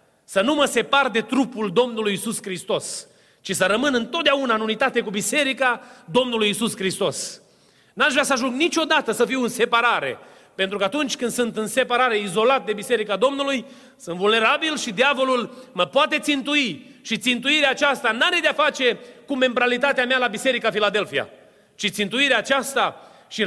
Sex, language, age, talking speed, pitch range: male, Romanian, 30-49, 165 wpm, 195-265 Hz